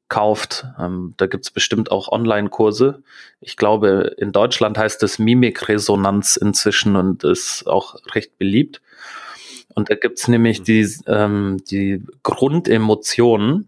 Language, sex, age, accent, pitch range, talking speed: German, male, 30-49, German, 105-125 Hz, 125 wpm